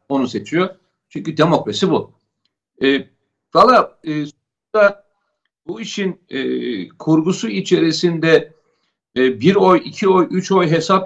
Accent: native